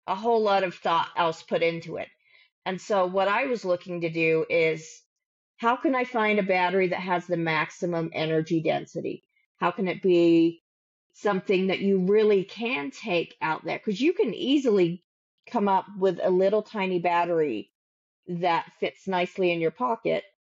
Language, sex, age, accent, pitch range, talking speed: English, female, 40-59, American, 170-205 Hz, 175 wpm